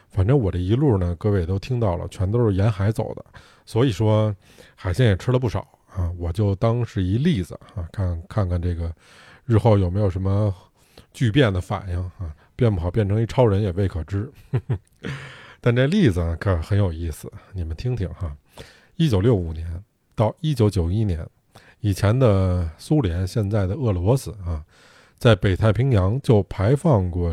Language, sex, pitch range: Chinese, male, 90-115 Hz